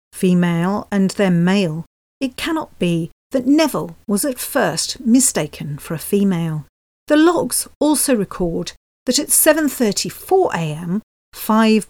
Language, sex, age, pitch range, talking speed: English, female, 40-59, 170-250 Hz, 120 wpm